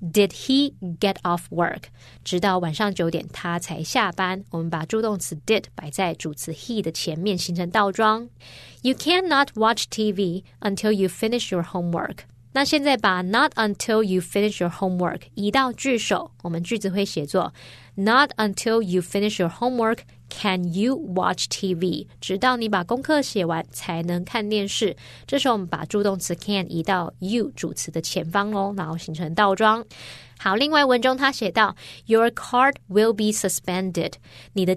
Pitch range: 175-225 Hz